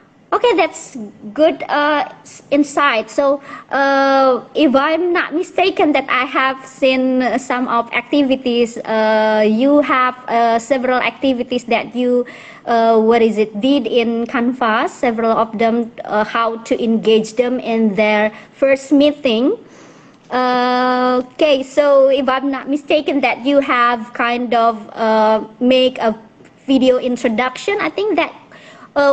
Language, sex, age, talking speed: English, male, 20-39, 135 wpm